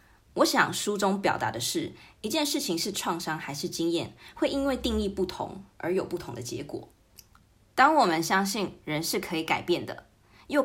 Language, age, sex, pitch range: Chinese, 20-39, female, 140-220 Hz